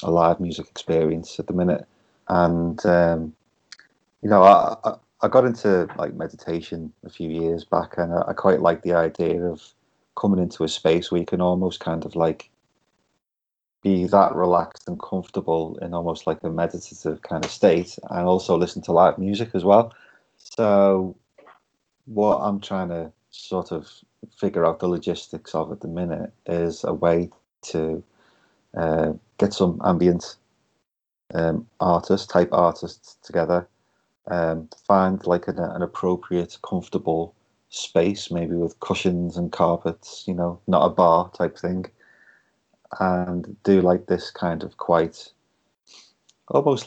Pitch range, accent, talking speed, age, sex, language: 85-95 Hz, British, 150 wpm, 30-49, male, English